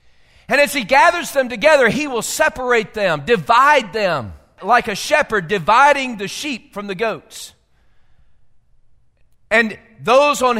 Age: 40-59